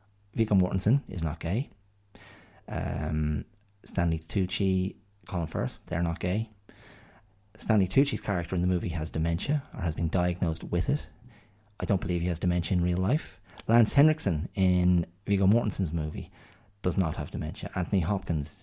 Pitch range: 85-100 Hz